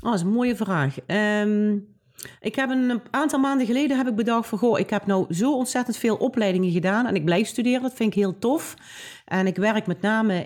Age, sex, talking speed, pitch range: 40-59, female, 230 wpm, 180-240 Hz